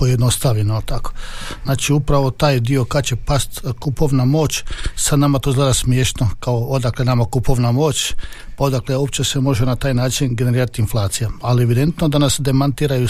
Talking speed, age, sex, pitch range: 165 wpm, 50-69, male, 125-140 Hz